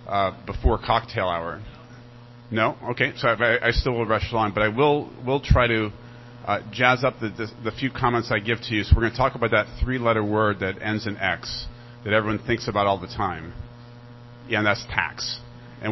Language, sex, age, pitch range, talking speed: English, male, 40-59, 105-120 Hz, 215 wpm